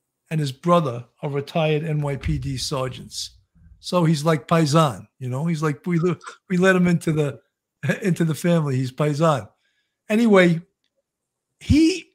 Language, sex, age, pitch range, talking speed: English, male, 50-69, 145-205 Hz, 135 wpm